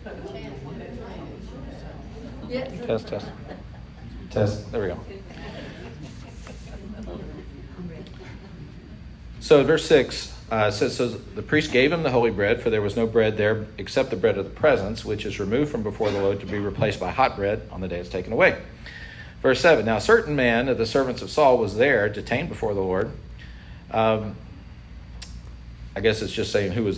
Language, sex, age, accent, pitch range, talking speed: English, male, 40-59, American, 100-120 Hz, 165 wpm